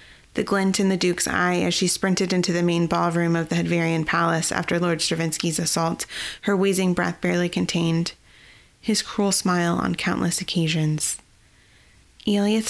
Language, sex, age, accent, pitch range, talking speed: English, female, 20-39, American, 170-200 Hz, 155 wpm